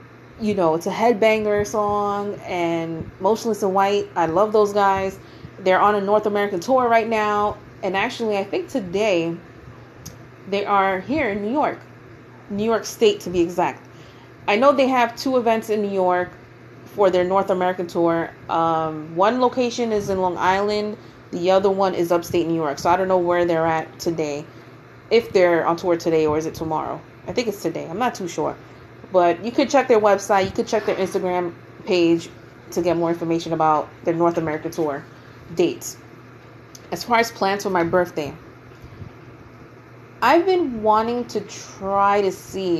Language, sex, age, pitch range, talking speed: English, female, 30-49, 160-210 Hz, 180 wpm